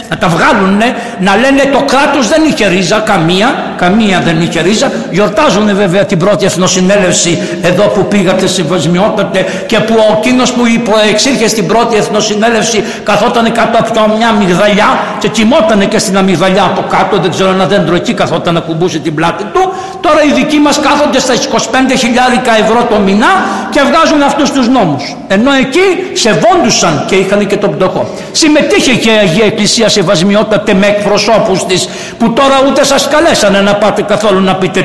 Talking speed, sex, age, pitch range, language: 160 wpm, male, 60-79, 185-235 Hz, Greek